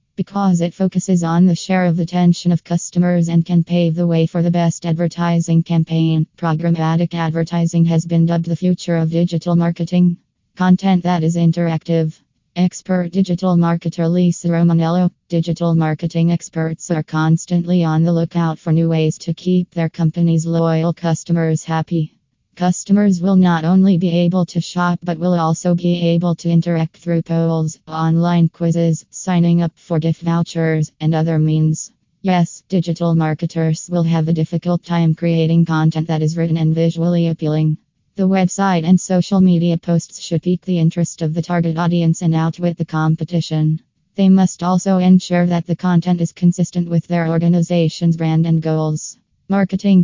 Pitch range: 165-175 Hz